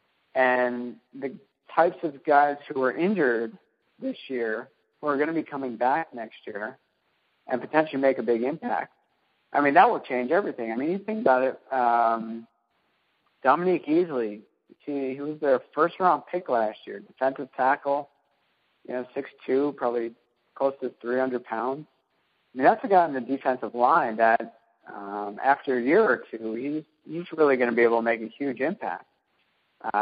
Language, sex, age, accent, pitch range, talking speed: English, male, 50-69, American, 120-150 Hz, 175 wpm